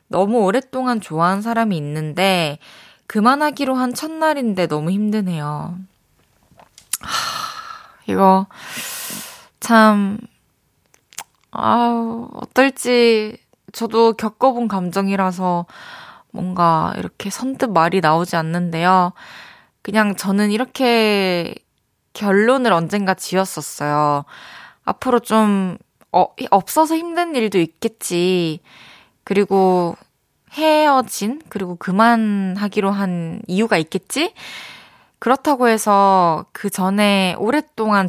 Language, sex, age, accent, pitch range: Korean, female, 20-39, native, 175-230 Hz